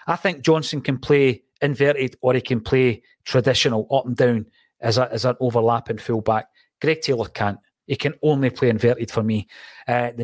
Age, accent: 30-49, British